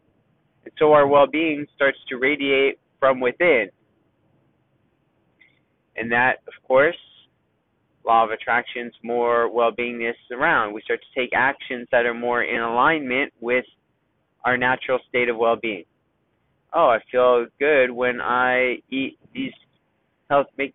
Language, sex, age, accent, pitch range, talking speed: English, male, 30-49, American, 115-140 Hz, 135 wpm